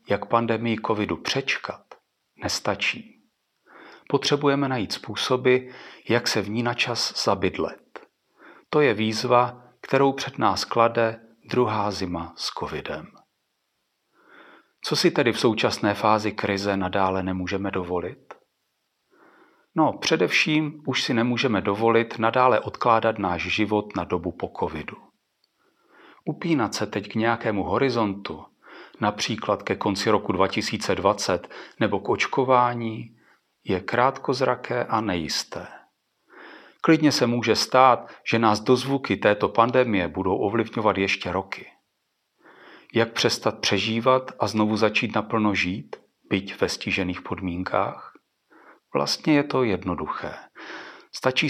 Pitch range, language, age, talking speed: 100-125 Hz, Czech, 40-59, 115 wpm